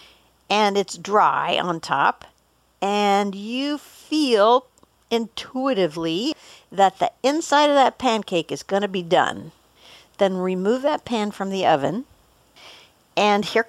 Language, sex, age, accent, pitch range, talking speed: English, female, 60-79, American, 185-235 Hz, 125 wpm